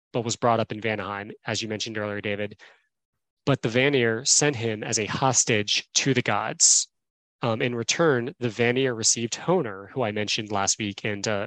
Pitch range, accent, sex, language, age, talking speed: 110-130 Hz, American, male, English, 20-39, 185 wpm